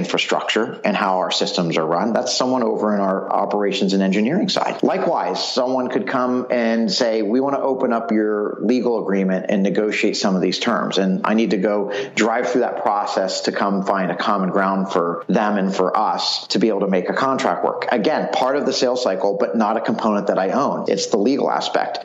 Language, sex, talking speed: English, male, 220 wpm